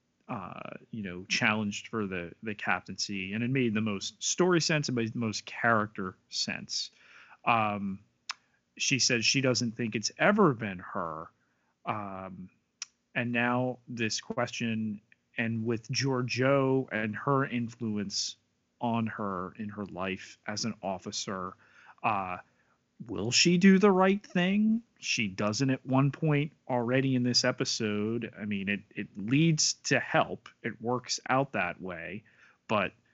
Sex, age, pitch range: male, 30-49, 105-135 Hz